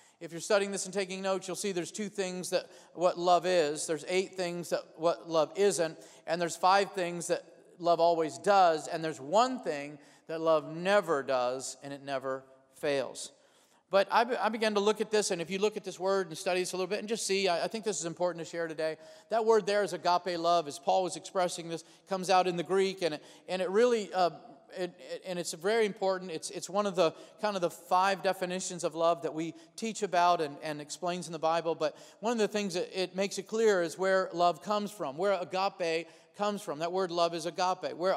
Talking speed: 235 wpm